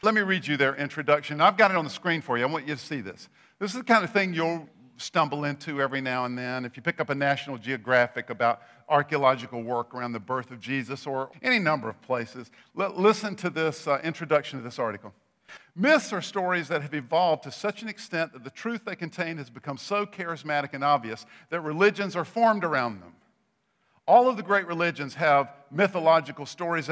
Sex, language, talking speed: male, English, 210 wpm